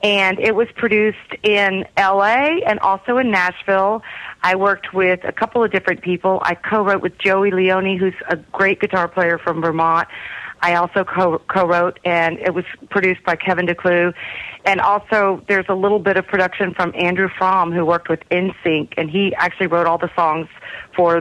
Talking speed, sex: 180 wpm, female